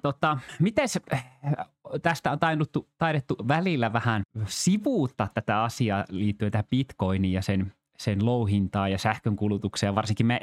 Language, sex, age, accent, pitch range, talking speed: Finnish, male, 20-39, native, 100-130 Hz, 115 wpm